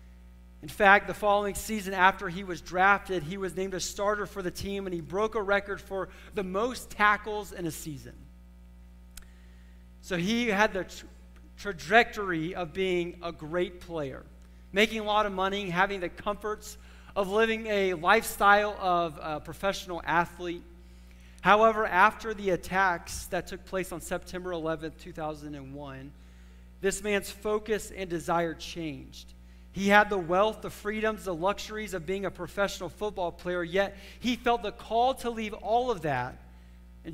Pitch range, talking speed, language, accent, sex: 150-200 Hz, 155 wpm, English, American, male